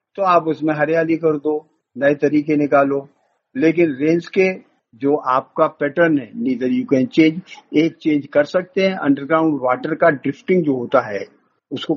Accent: native